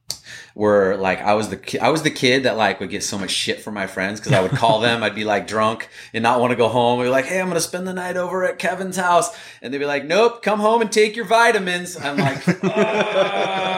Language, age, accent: English, 30-49, American